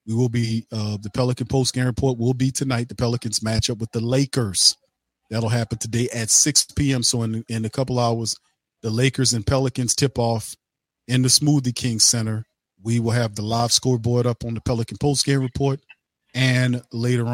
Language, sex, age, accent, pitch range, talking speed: English, male, 40-59, American, 110-125 Hz, 190 wpm